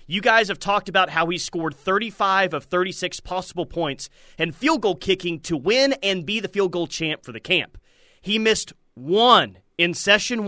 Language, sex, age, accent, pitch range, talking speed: English, male, 30-49, American, 160-210 Hz, 190 wpm